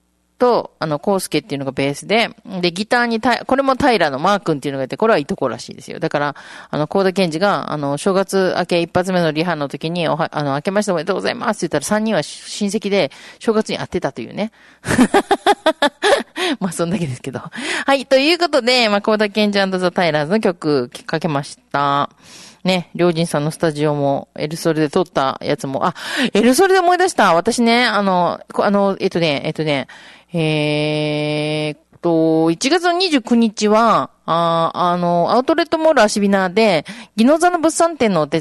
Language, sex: Japanese, female